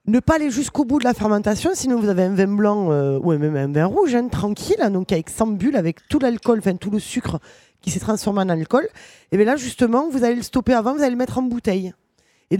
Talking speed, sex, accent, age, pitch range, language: 260 wpm, female, French, 20-39, 190-245 Hz, French